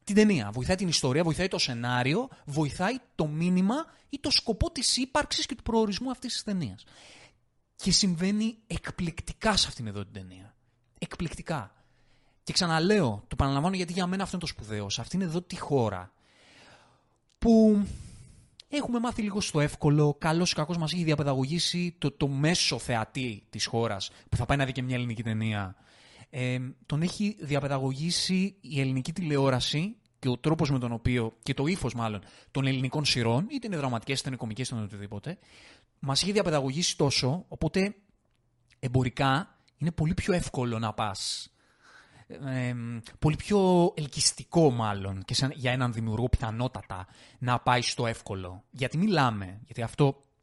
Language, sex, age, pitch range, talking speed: Greek, male, 30-49, 115-175 Hz, 165 wpm